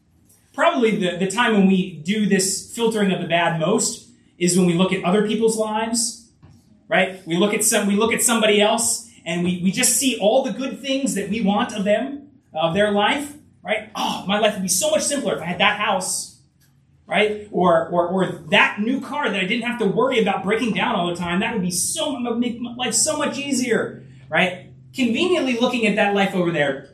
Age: 30-49